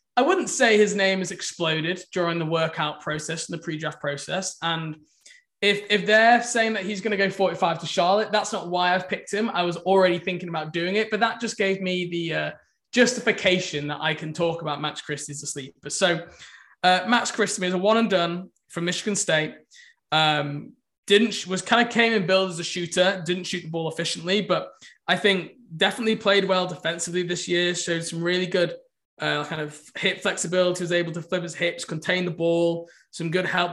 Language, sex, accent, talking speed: English, male, British, 205 wpm